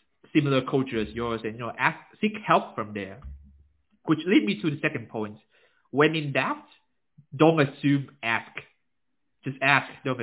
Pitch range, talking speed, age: 115-145 Hz, 165 wpm, 20-39